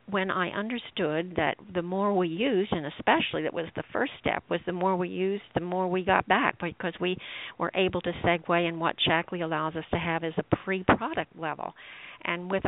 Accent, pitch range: American, 165-185 Hz